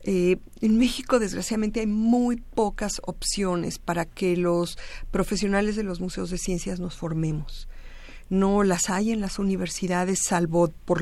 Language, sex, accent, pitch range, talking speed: Spanish, female, Mexican, 160-205 Hz, 145 wpm